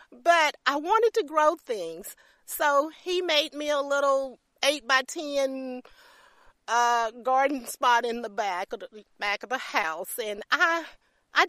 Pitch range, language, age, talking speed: 235-325 Hz, English, 40-59, 150 wpm